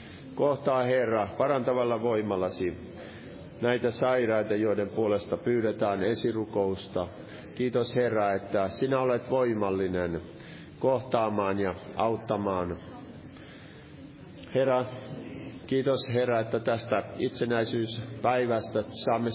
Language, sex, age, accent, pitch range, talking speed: Finnish, male, 50-69, native, 105-130 Hz, 80 wpm